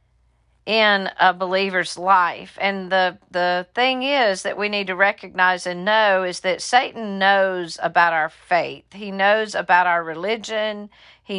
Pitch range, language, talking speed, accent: 180-215 Hz, English, 155 wpm, American